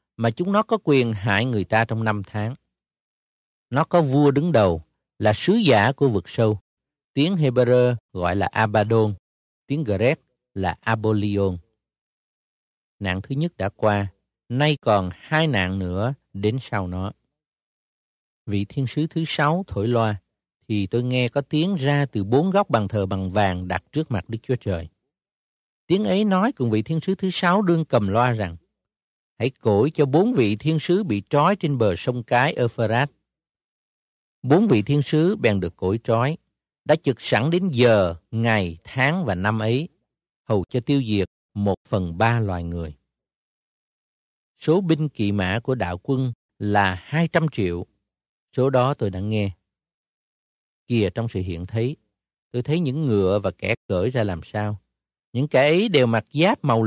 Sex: male